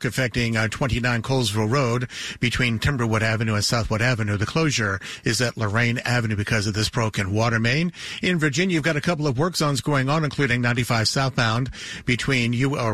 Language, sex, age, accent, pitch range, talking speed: English, male, 50-69, American, 115-140 Hz, 180 wpm